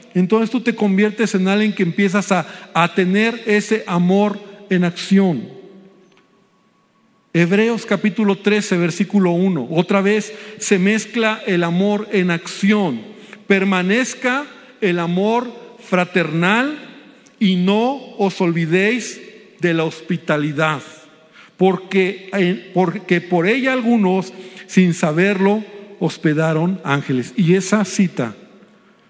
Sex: male